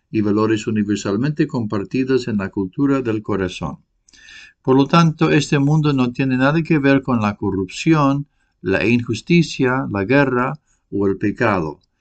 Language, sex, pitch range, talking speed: English, male, 105-140 Hz, 145 wpm